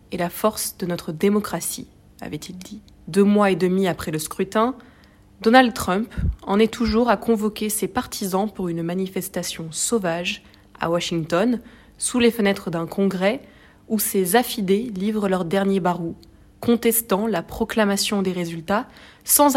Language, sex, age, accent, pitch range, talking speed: French, female, 20-39, French, 175-225 Hz, 145 wpm